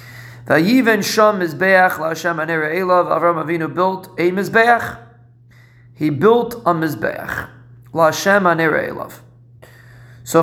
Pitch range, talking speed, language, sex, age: 125-175 Hz, 105 wpm, English, male, 40-59